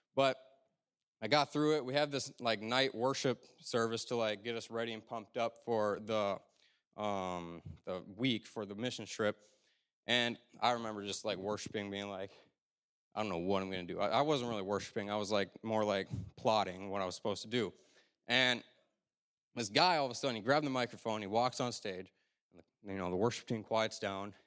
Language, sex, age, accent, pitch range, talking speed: English, male, 20-39, American, 105-130 Hz, 215 wpm